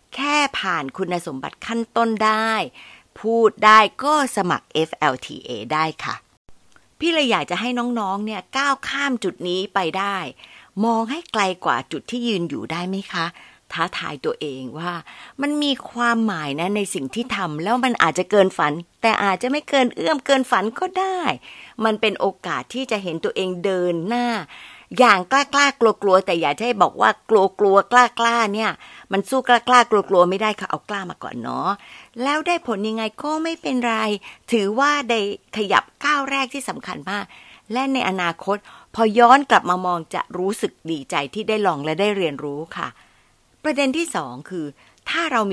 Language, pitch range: Thai, 185-250 Hz